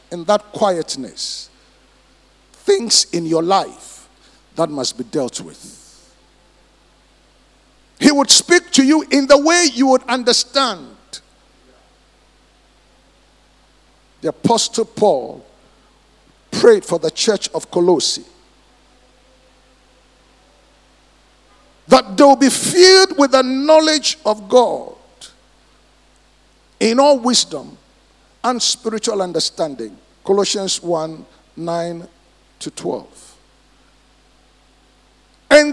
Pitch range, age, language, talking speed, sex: 200-290 Hz, 50-69, English, 90 wpm, male